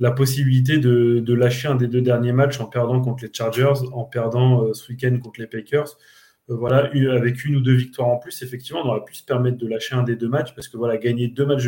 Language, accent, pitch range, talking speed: French, French, 115-130 Hz, 255 wpm